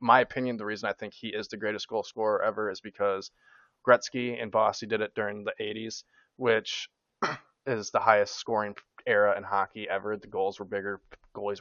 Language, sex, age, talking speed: English, male, 20-39, 190 wpm